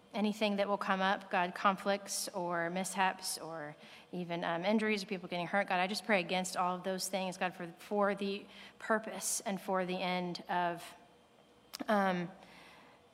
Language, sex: English, female